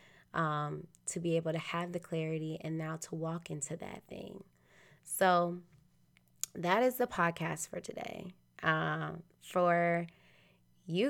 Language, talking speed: English, 135 wpm